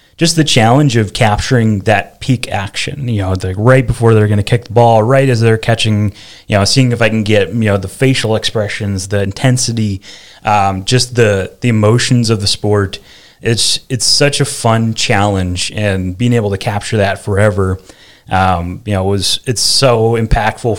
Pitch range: 100-120 Hz